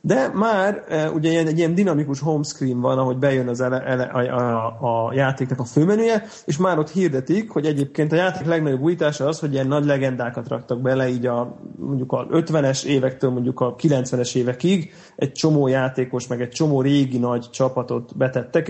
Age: 30-49